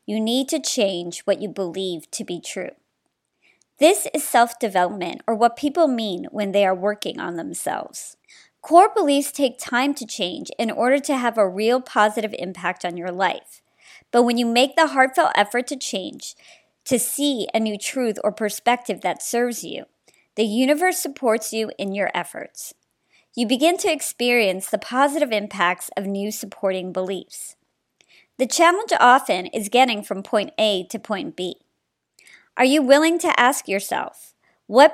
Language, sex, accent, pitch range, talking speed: English, male, American, 200-285 Hz, 165 wpm